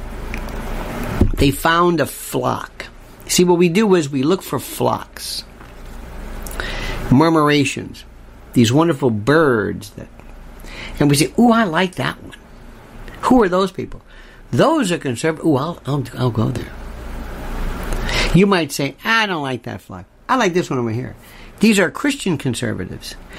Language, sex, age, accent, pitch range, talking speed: English, male, 50-69, American, 120-180 Hz, 145 wpm